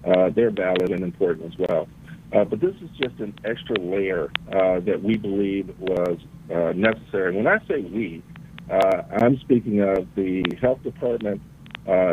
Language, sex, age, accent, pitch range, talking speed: English, male, 50-69, American, 95-110 Hz, 170 wpm